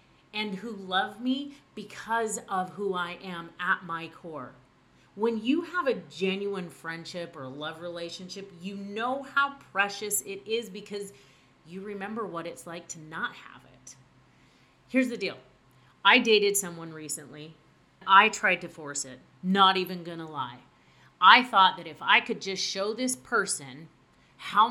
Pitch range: 165-210 Hz